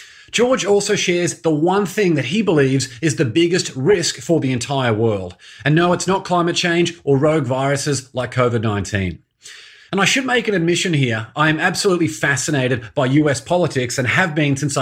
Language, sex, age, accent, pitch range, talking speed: English, male, 30-49, Australian, 135-175 Hz, 185 wpm